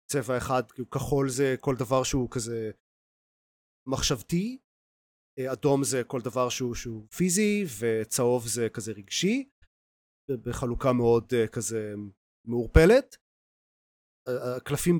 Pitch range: 110-140 Hz